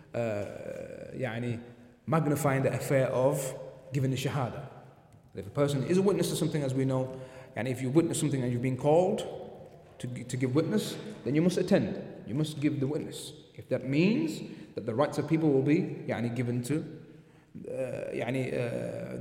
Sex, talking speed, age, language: male, 180 wpm, 30-49, English